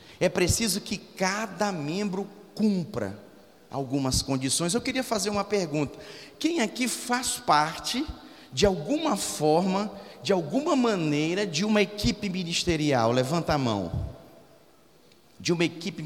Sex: male